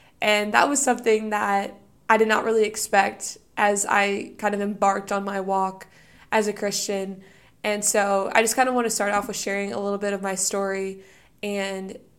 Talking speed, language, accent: 195 wpm, English, American